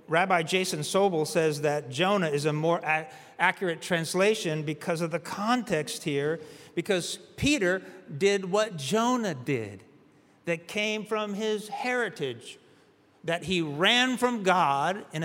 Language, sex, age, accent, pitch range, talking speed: English, male, 50-69, American, 145-185 Hz, 130 wpm